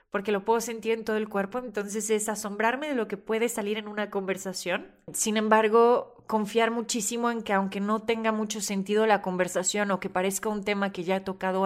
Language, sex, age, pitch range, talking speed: Spanish, female, 30-49, 185-215 Hz, 210 wpm